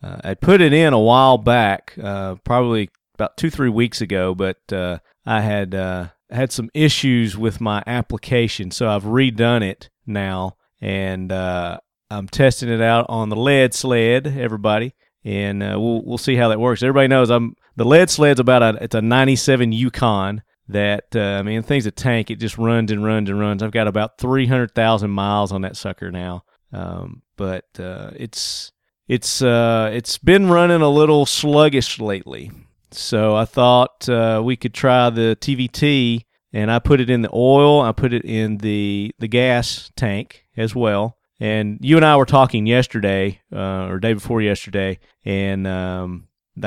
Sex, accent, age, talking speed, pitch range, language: male, American, 40-59, 175 wpm, 100-125 Hz, English